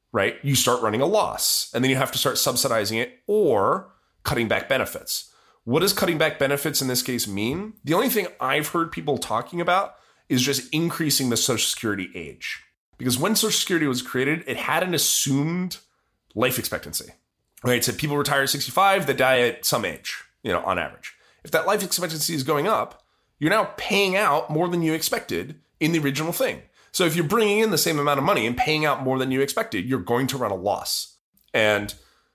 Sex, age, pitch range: male, 30-49, 120-165 Hz